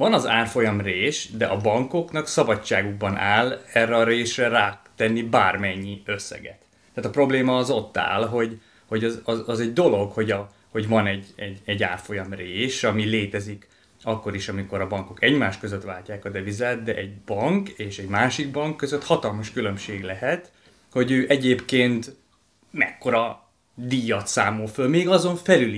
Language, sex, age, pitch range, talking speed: Hungarian, male, 30-49, 100-125 Hz, 165 wpm